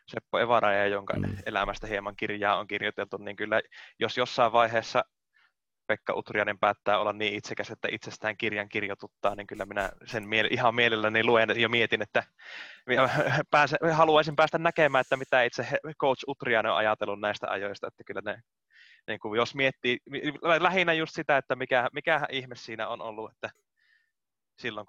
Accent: native